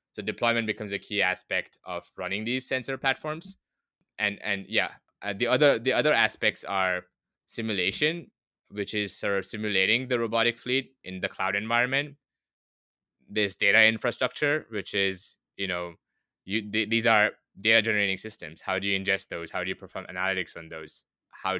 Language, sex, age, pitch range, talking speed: English, male, 20-39, 90-110 Hz, 160 wpm